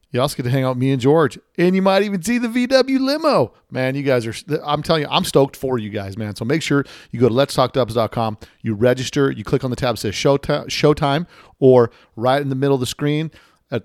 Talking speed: 255 wpm